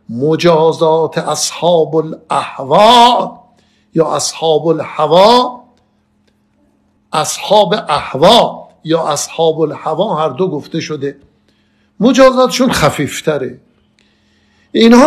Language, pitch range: Persian, 160-240 Hz